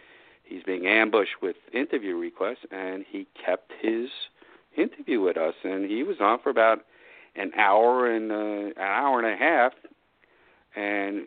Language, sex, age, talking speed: English, male, 50-69, 155 wpm